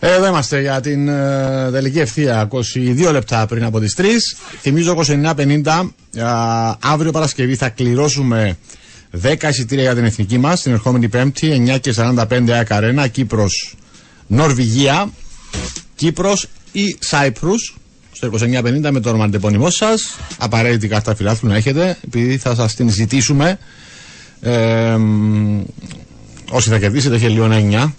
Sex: male